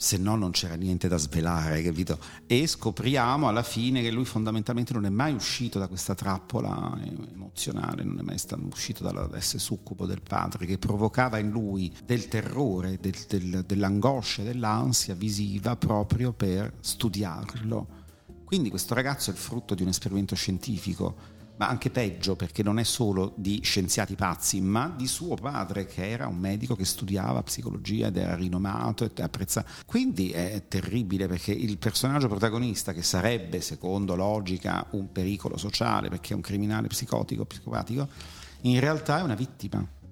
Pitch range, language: 95-115 Hz, Italian